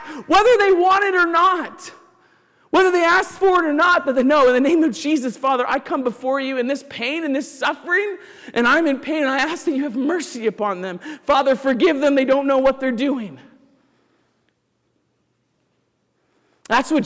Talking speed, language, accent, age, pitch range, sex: 195 wpm, English, American, 40-59, 245-310 Hz, male